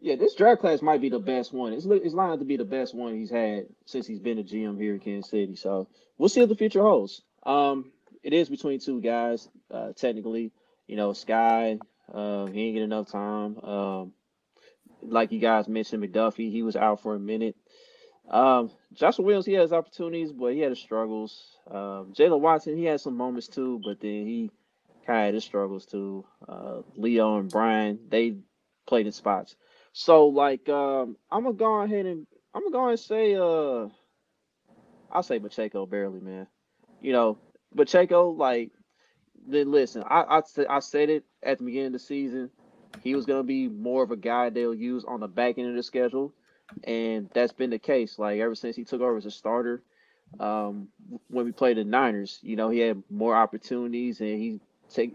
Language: English